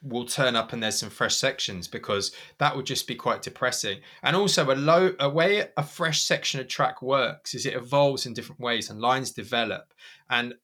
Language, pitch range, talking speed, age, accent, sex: English, 120-150 Hz, 210 wpm, 20-39, British, male